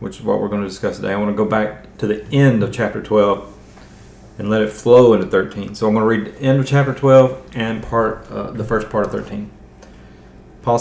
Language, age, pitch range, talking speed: English, 30-49, 105-125 Hz, 245 wpm